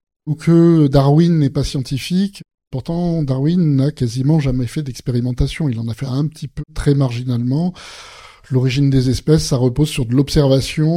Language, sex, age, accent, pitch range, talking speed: French, male, 20-39, French, 135-165 Hz, 165 wpm